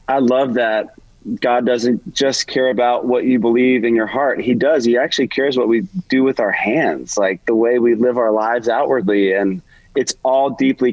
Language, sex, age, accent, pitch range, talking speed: English, male, 30-49, American, 105-125 Hz, 205 wpm